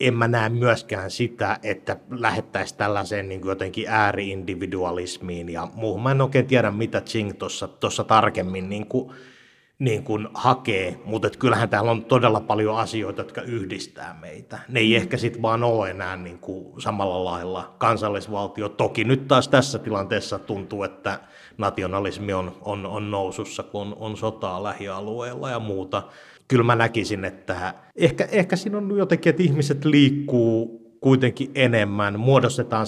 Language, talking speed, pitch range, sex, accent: Finnish, 145 wpm, 95-120 Hz, male, native